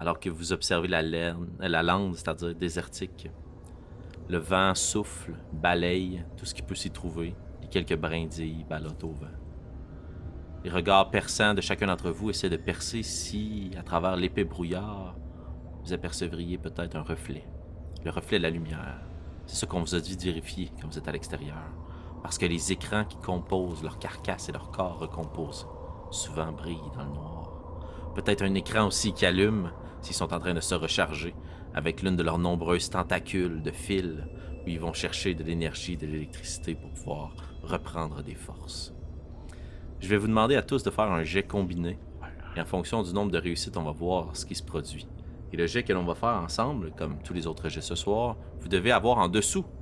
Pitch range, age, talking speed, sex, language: 80-95 Hz, 30-49, 190 wpm, male, French